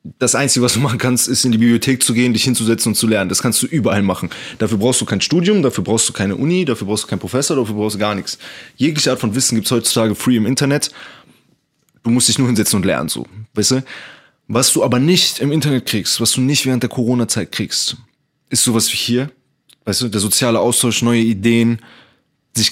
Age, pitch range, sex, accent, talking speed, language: 20-39, 110-125 Hz, male, German, 230 wpm, German